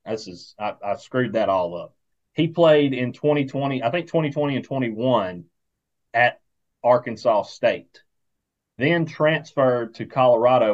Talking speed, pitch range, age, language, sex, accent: 135 wpm, 105-130 Hz, 30-49, English, male, American